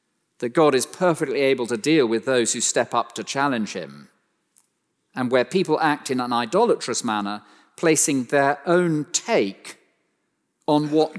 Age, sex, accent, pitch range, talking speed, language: 40-59, male, British, 115-160 Hz, 155 wpm, English